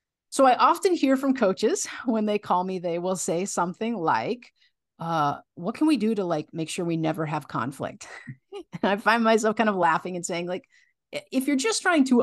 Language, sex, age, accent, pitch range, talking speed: English, female, 40-59, American, 180-260 Hz, 210 wpm